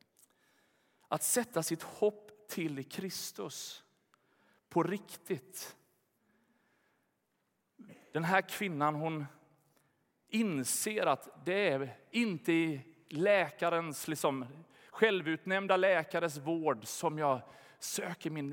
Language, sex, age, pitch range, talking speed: Swedish, male, 30-49, 150-180 Hz, 85 wpm